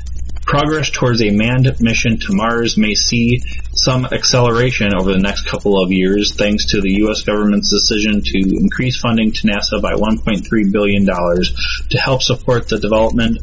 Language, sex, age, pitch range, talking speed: English, male, 30-49, 100-125 Hz, 160 wpm